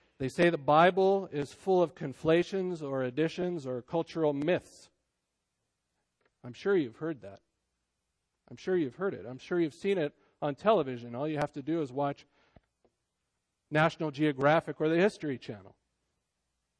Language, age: English, 40-59